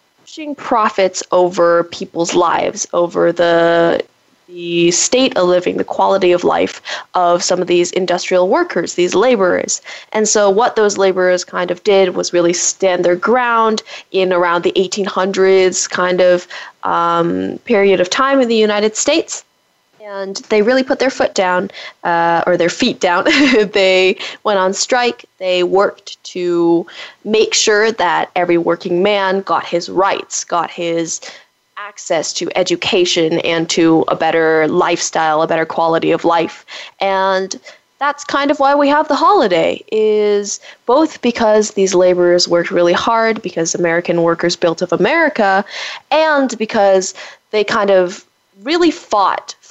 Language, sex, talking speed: English, female, 145 wpm